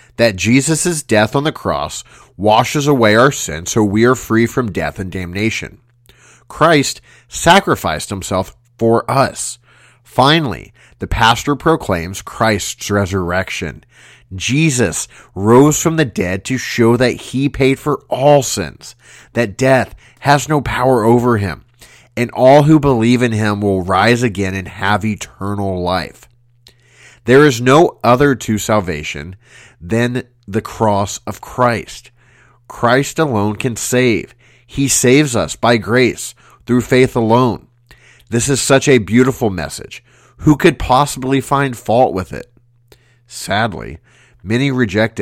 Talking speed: 135 wpm